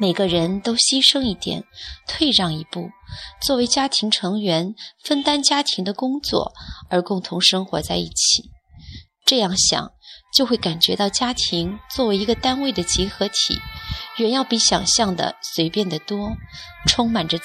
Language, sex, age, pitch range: Chinese, female, 20-39, 175-230 Hz